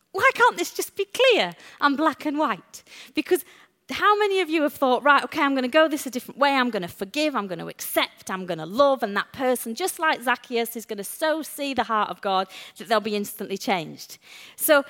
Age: 30-49